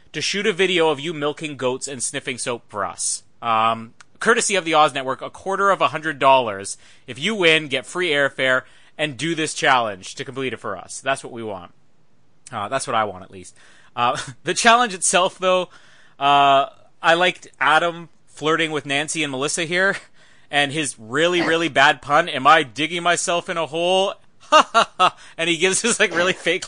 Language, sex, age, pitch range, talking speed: English, male, 30-49, 130-165 Hz, 200 wpm